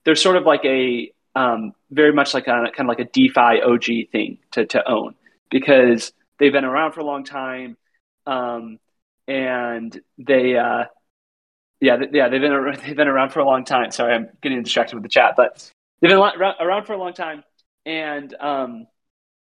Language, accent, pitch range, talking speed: English, American, 125-155 Hz, 200 wpm